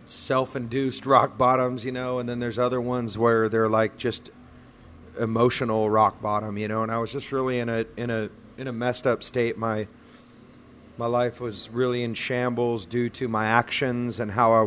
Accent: American